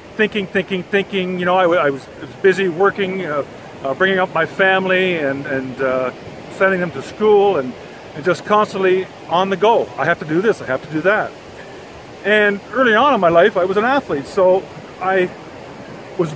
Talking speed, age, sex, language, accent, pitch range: 195 wpm, 40-59, male, English, American, 170-210 Hz